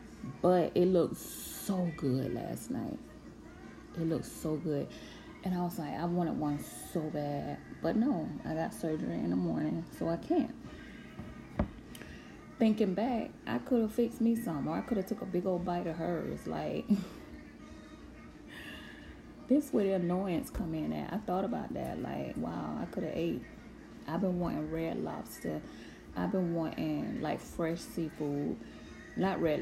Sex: female